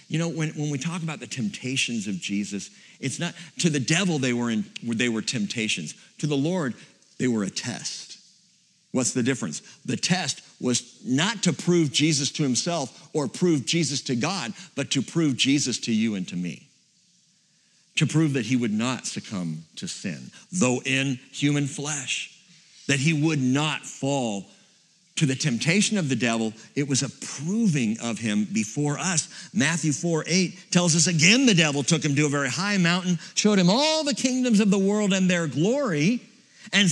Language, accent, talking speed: English, American, 185 wpm